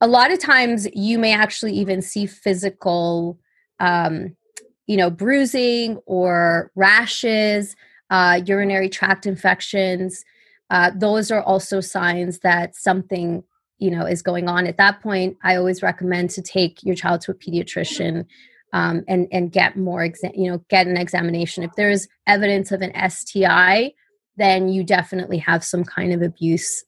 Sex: female